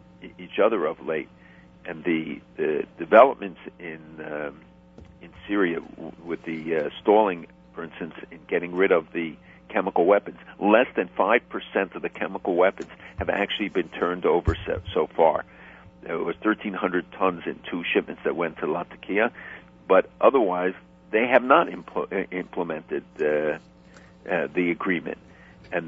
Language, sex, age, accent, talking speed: English, male, 50-69, American, 150 wpm